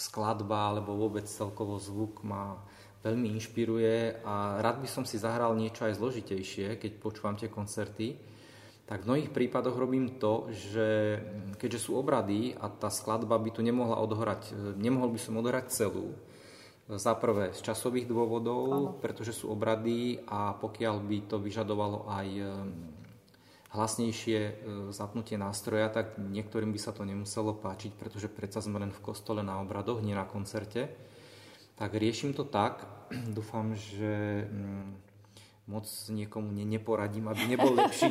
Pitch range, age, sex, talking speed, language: 105-115 Hz, 20-39, male, 140 wpm, Slovak